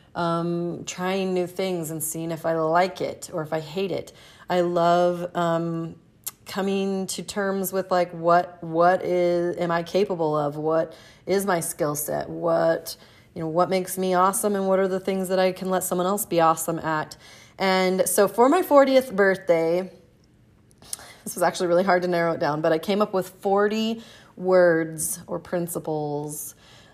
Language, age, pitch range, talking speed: English, 30-49, 165-195 Hz, 180 wpm